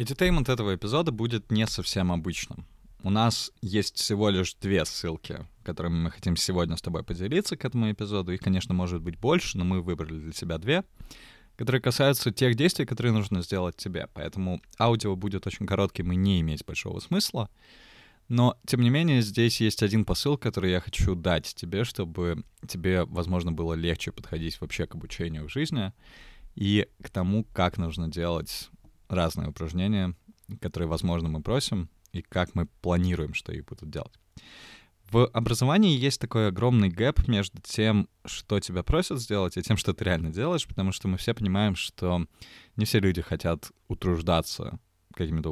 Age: 20-39